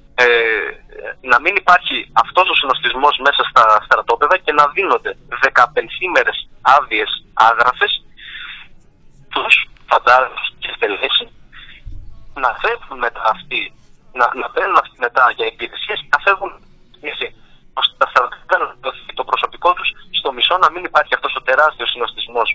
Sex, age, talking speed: male, 30-49, 135 wpm